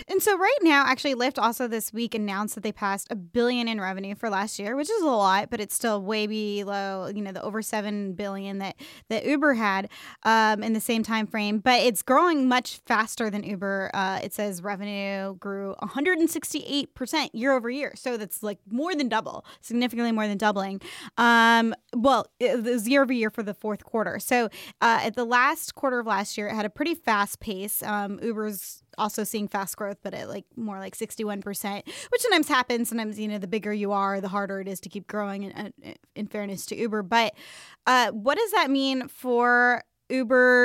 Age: 20-39